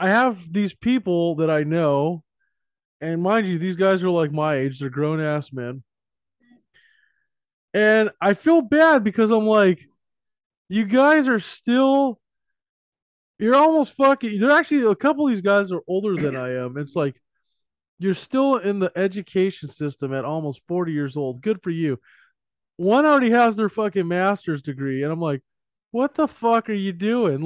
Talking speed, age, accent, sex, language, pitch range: 170 wpm, 20-39, American, male, English, 170-255 Hz